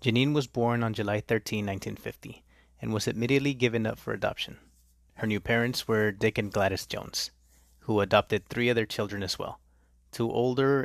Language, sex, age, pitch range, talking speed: English, male, 30-49, 75-120 Hz, 170 wpm